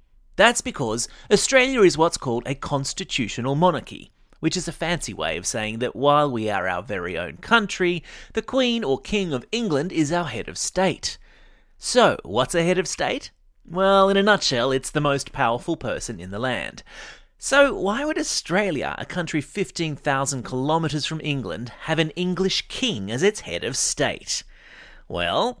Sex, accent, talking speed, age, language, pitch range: male, Australian, 170 wpm, 30-49, English, 130-190 Hz